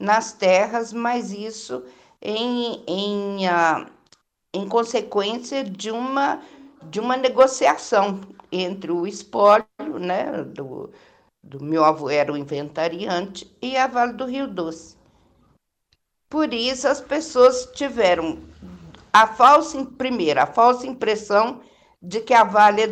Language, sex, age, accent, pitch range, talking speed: Portuguese, female, 50-69, Brazilian, 185-250 Hz, 125 wpm